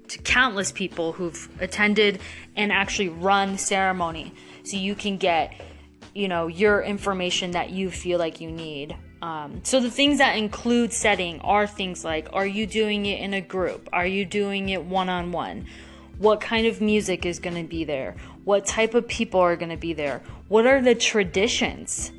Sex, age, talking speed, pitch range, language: female, 20-39, 175 wpm, 180-225 Hz, English